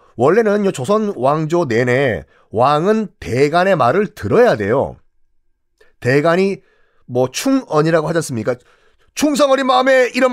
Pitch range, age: 150-245 Hz, 40-59